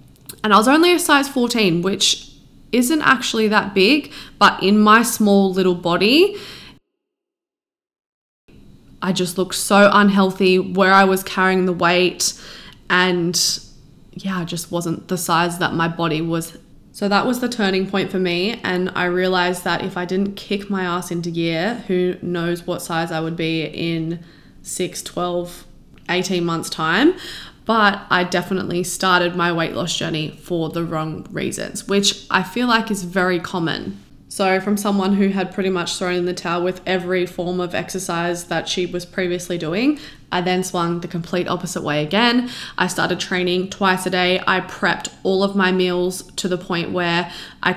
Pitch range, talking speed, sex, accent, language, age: 175-195 Hz, 175 wpm, female, Australian, English, 20-39